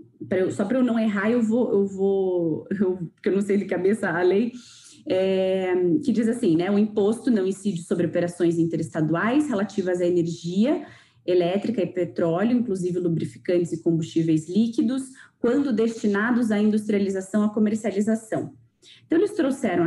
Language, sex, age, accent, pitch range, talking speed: Portuguese, female, 20-39, Brazilian, 175-230 Hz, 140 wpm